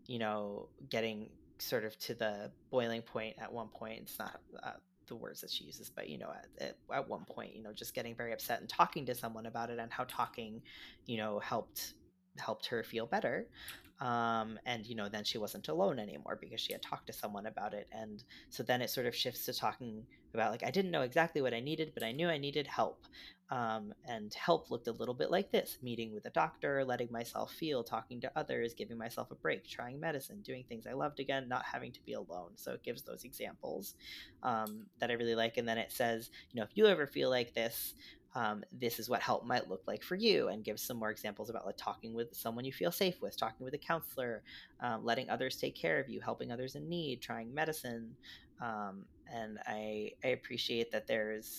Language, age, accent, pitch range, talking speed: English, 20-39, American, 110-130 Hz, 225 wpm